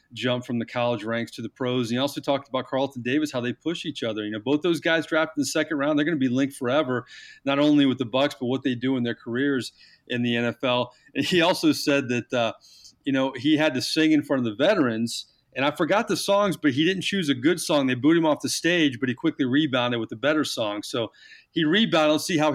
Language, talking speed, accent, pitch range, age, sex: English, 265 wpm, American, 125-155 Hz, 30-49, male